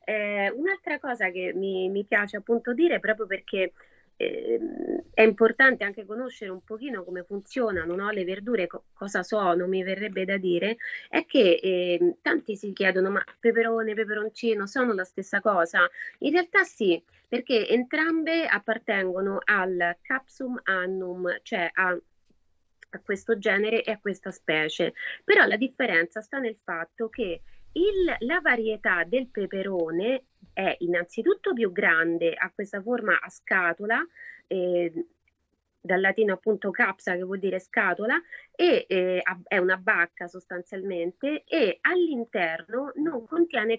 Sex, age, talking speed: female, 20-39, 140 wpm